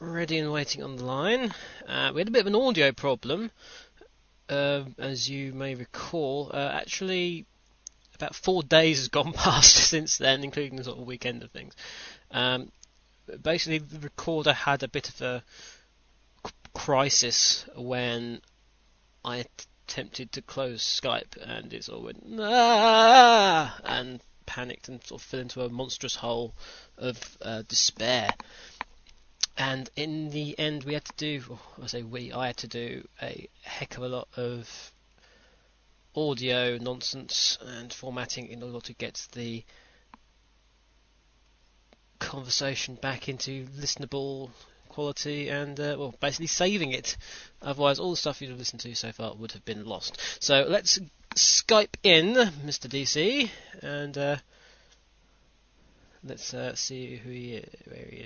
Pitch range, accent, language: 125-150 Hz, British, English